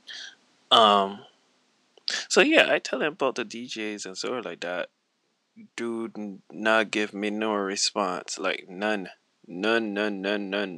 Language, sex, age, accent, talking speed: English, male, 20-39, American, 150 wpm